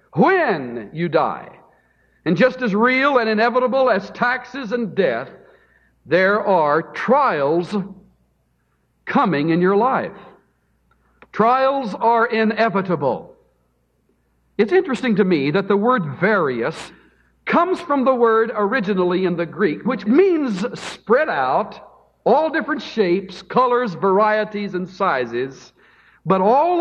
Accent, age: American, 60-79